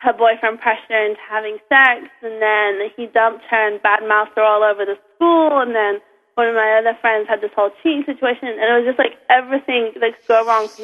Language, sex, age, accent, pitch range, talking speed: English, female, 20-39, American, 215-270 Hz, 225 wpm